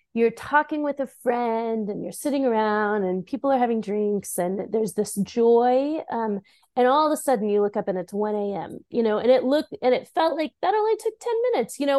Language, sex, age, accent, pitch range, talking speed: English, female, 30-49, American, 195-270 Hz, 235 wpm